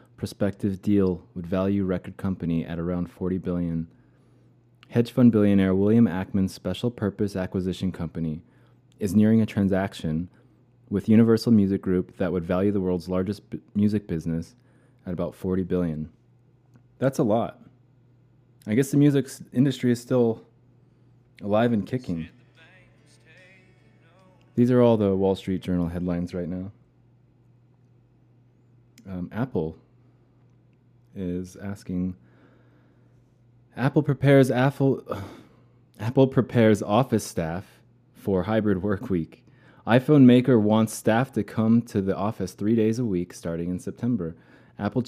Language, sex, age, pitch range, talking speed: English, male, 20-39, 90-120 Hz, 130 wpm